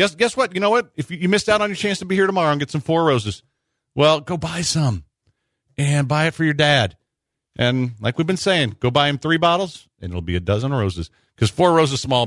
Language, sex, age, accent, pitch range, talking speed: English, male, 50-69, American, 100-140 Hz, 255 wpm